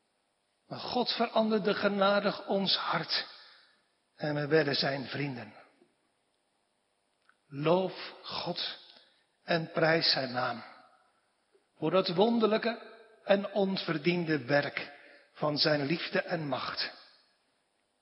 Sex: male